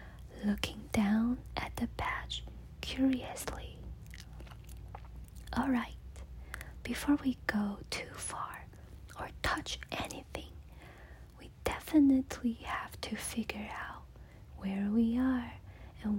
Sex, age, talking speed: female, 20-39, 95 wpm